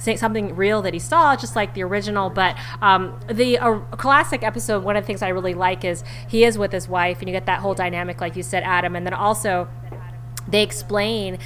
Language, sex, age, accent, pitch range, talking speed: English, female, 20-39, American, 175-210 Hz, 225 wpm